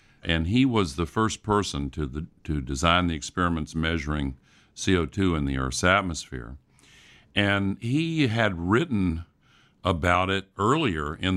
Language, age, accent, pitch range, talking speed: English, 50-69, American, 80-100 Hz, 135 wpm